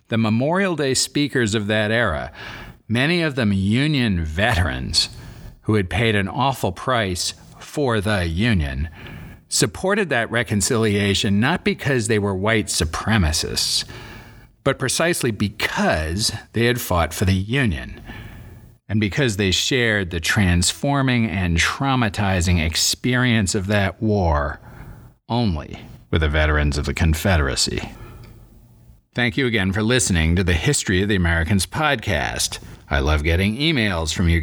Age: 40-59